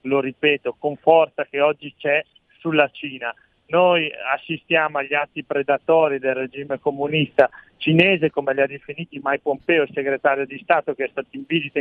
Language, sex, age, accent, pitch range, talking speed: Italian, male, 40-59, native, 140-165 Hz, 170 wpm